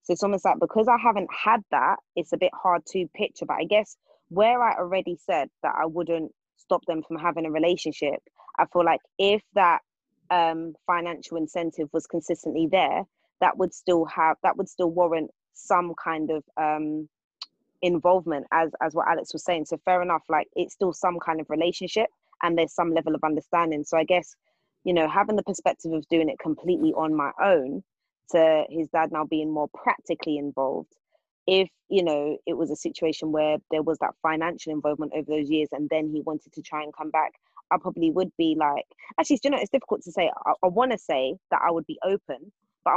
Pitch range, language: 155-185 Hz, English